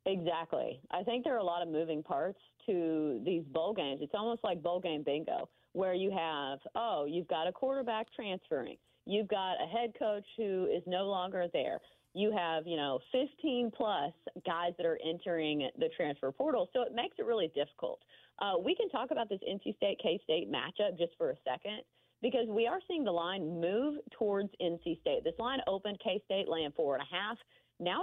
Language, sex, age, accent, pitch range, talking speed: English, female, 40-59, American, 165-230 Hz, 195 wpm